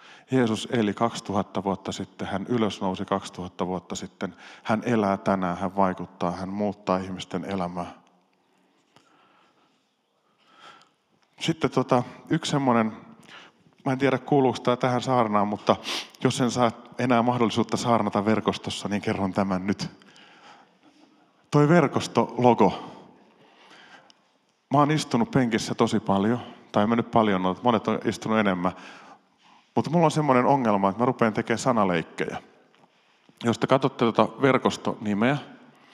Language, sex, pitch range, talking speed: Finnish, male, 100-130 Hz, 125 wpm